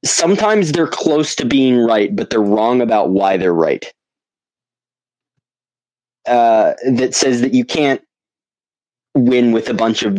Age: 20-39